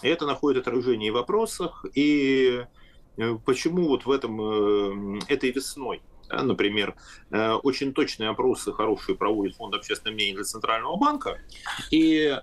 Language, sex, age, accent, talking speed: Russian, male, 30-49, native, 125 wpm